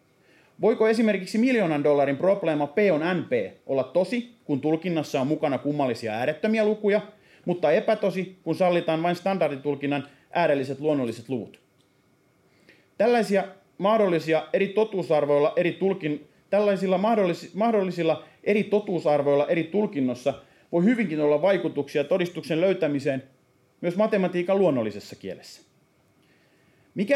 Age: 30-49